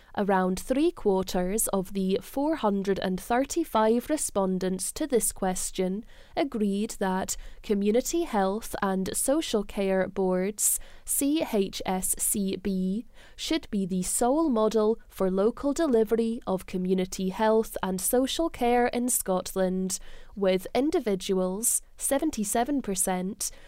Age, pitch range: 10-29, 190-240 Hz